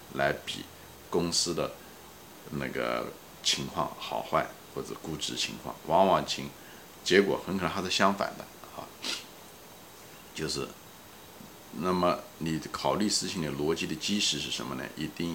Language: Chinese